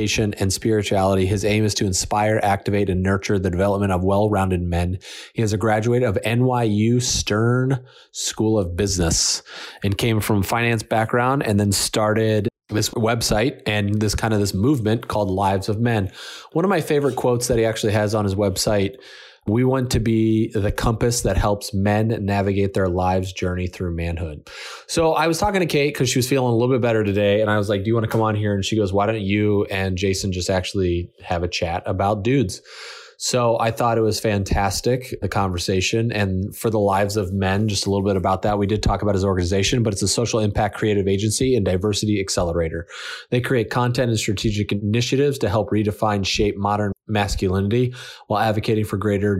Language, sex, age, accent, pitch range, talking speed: English, male, 30-49, American, 100-115 Hz, 200 wpm